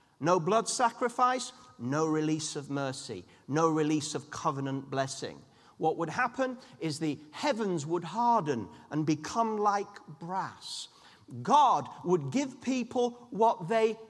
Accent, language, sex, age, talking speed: British, English, male, 40-59, 130 wpm